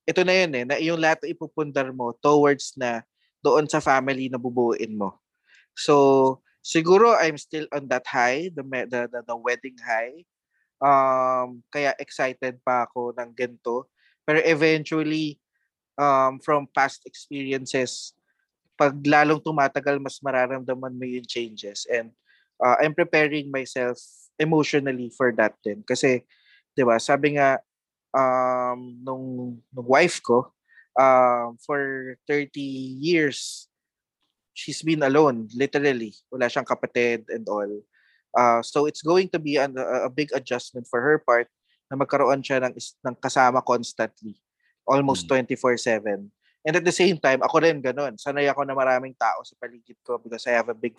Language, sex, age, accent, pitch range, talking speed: Filipino, male, 20-39, native, 120-145 Hz, 145 wpm